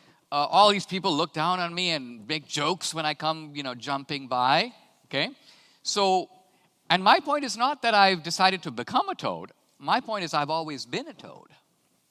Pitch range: 120-185 Hz